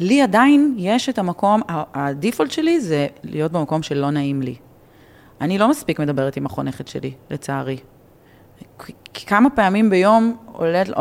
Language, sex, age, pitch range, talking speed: Hebrew, female, 30-49, 140-210 Hz, 140 wpm